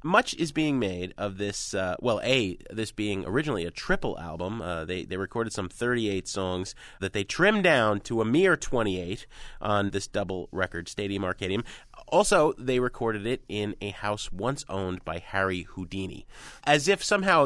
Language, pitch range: English, 105-150 Hz